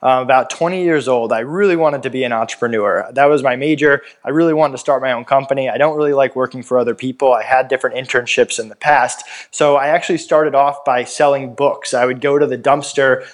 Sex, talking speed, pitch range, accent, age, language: male, 240 wpm, 125-145 Hz, American, 20-39, English